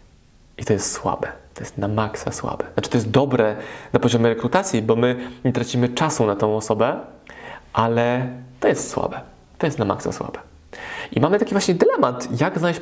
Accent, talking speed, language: native, 185 wpm, Polish